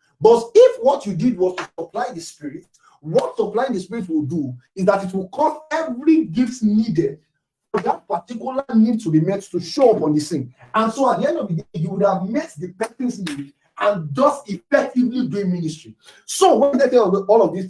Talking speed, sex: 215 wpm, male